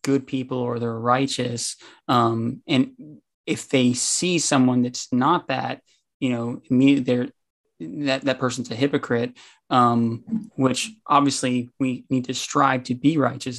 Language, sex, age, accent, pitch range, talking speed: English, male, 20-39, American, 120-135 Hz, 145 wpm